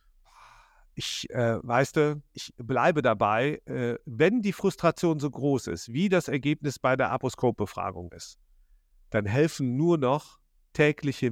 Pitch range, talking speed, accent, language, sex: 120-155 Hz, 135 wpm, German, German, male